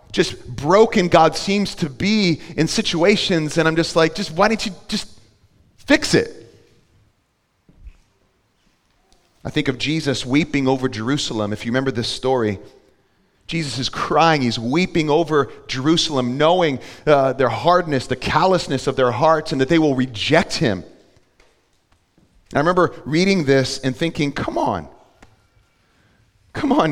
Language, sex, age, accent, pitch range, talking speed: English, male, 40-59, American, 125-175 Hz, 140 wpm